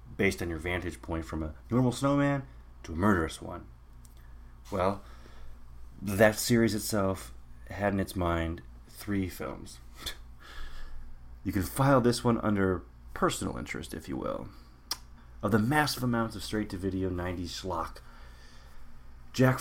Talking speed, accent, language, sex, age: 130 wpm, American, English, male, 30-49